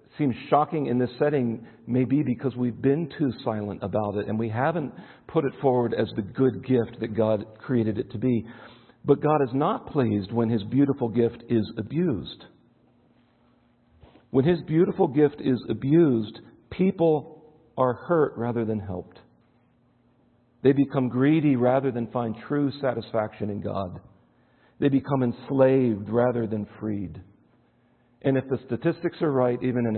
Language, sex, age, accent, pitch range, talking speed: English, male, 50-69, American, 110-140 Hz, 150 wpm